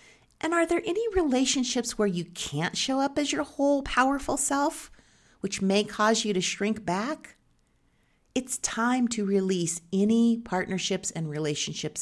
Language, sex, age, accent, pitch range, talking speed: English, female, 40-59, American, 170-240 Hz, 150 wpm